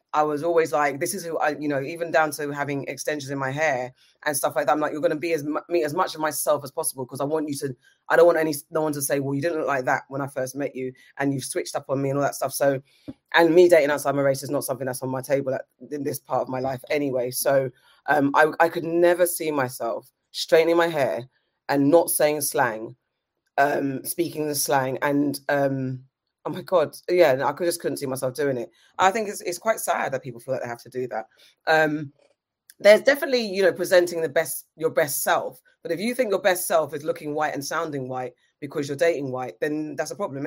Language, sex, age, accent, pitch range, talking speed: English, female, 20-39, British, 135-165 Hz, 250 wpm